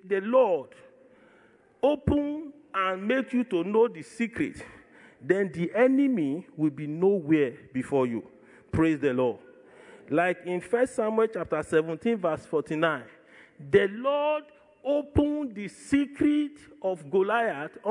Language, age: English, 40-59